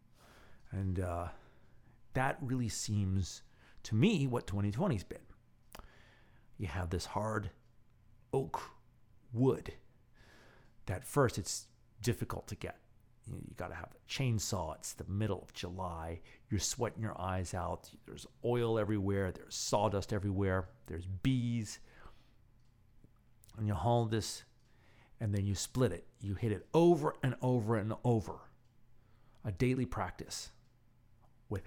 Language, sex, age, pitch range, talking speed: English, male, 40-59, 105-120 Hz, 130 wpm